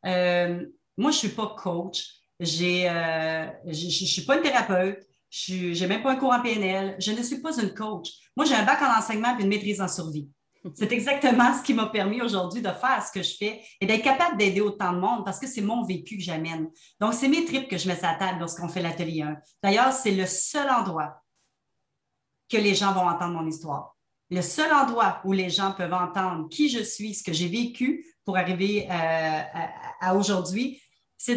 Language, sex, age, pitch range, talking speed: French, female, 30-49, 175-220 Hz, 220 wpm